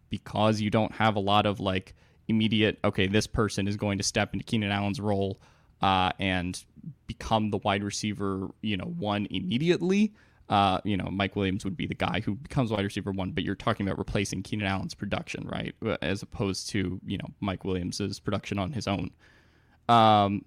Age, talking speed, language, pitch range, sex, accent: 10-29, 190 wpm, English, 95-105 Hz, male, American